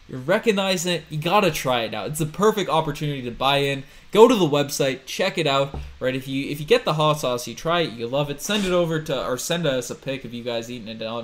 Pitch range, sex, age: 120-160 Hz, male, 20-39